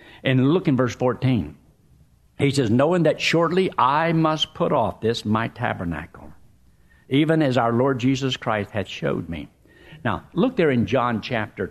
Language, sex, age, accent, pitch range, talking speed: English, male, 60-79, American, 120-170 Hz, 165 wpm